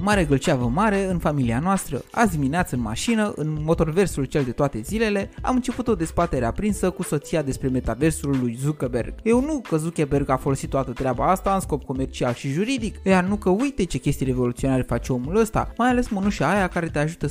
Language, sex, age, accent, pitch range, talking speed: Romanian, male, 20-39, native, 130-195 Hz, 200 wpm